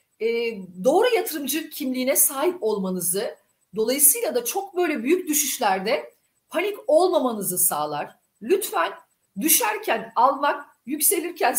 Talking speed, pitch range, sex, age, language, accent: 100 wpm, 230-350 Hz, female, 40-59, Turkish, native